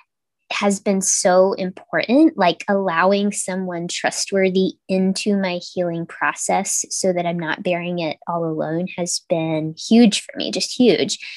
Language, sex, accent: English, female, American